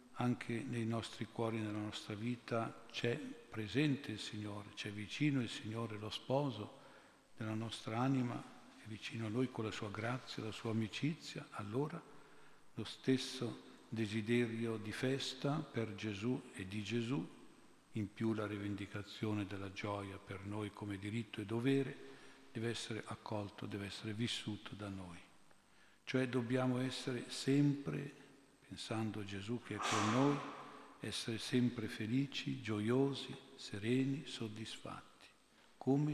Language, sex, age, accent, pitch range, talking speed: Italian, male, 50-69, native, 105-125 Hz, 130 wpm